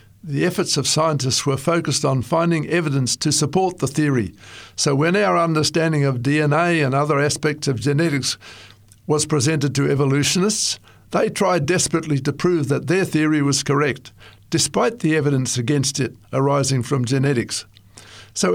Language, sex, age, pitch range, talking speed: English, male, 60-79, 115-160 Hz, 150 wpm